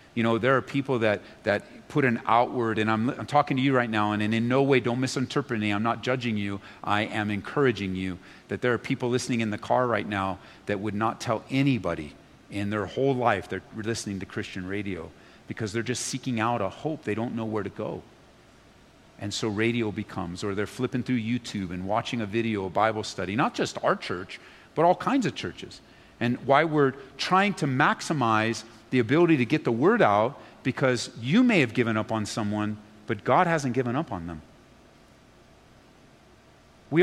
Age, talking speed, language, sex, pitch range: 50-69, 200 wpm, English, male, 105-155 Hz